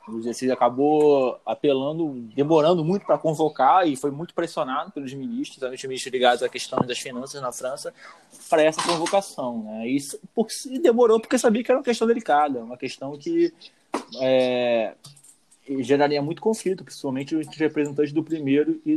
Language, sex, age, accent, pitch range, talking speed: Portuguese, male, 20-39, Brazilian, 130-175 Hz, 165 wpm